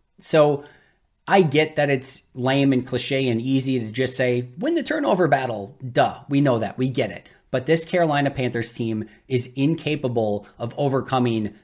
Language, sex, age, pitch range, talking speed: English, male, 20-39, 120-150 Hz, 170 wpm